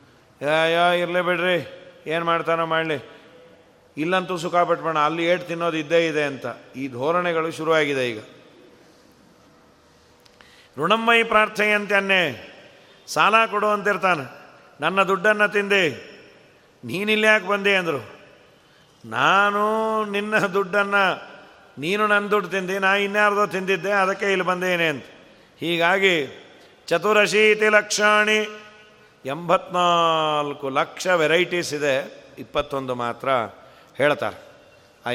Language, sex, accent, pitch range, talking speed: Kannada, male, native, 160-200 Hz, 95 wpm